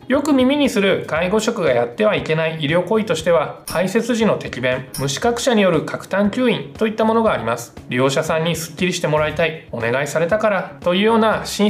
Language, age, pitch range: Japanese, 20-39, 145-215 Hz